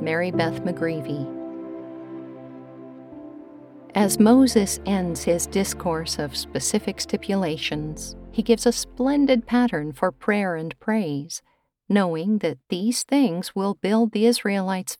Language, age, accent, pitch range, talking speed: English, 50-69, American, 165-220 Hz, 110 wpm